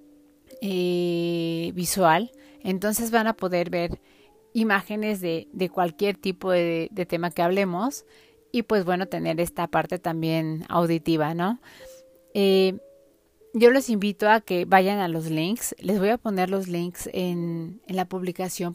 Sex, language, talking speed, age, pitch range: female, Spanish, 145 wpm, 30-49, 180-215 Hz